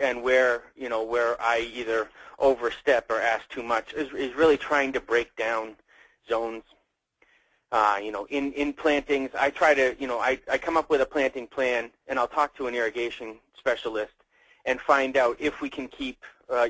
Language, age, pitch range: English, 30-49, 115-145 Hz